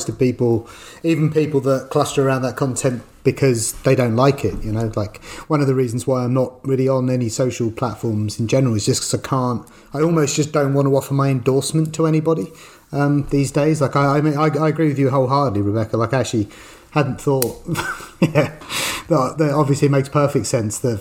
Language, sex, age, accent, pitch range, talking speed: English, male, 30-49, British, 110-140 Hz, 210 wpm